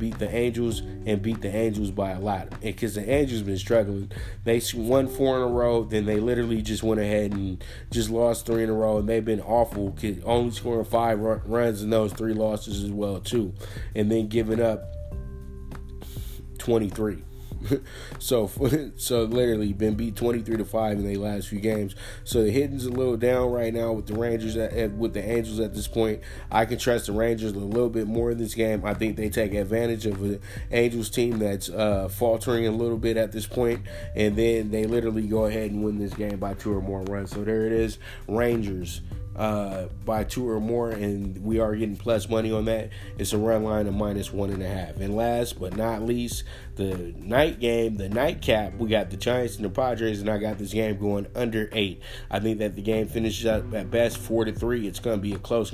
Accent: American